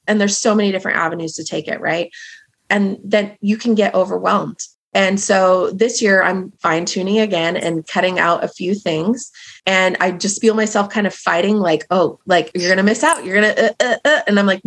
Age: 30-49